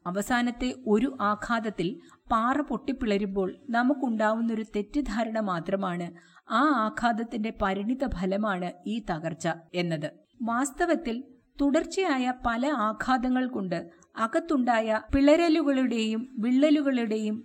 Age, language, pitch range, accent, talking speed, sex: 50-69, Malayalam, 195-260 Hz, native, 80 wpm, female